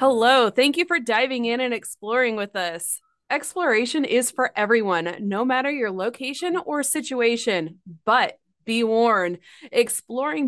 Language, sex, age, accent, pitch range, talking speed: English, female, 20-39, American, 210-270 Hz, 135 wpm